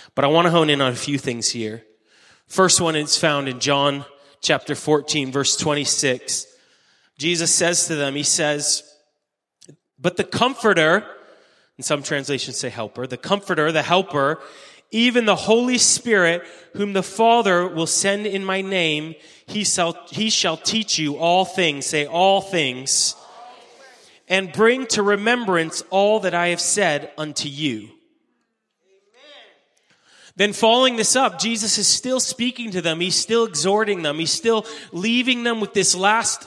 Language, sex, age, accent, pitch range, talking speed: English, male, 30-49, American, 150-220 Hz, 155 wpm